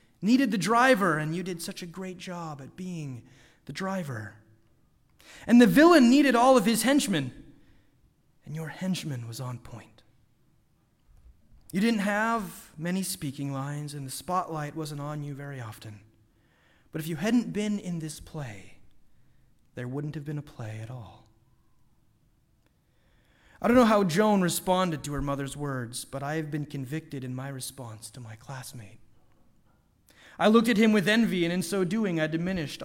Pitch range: 135-215 Hz